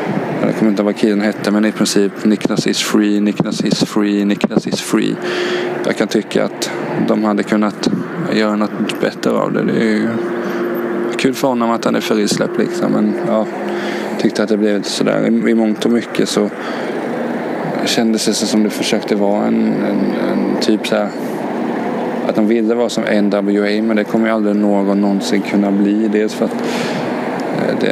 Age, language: 20-39, Swedish